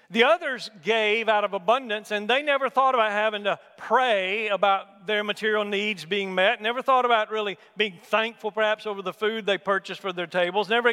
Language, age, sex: English, 50-69, male